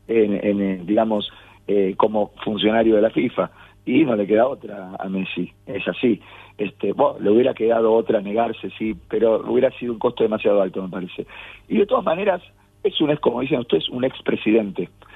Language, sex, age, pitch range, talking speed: Spanish, male, 40-59, 100-120 Hz, 190 wpm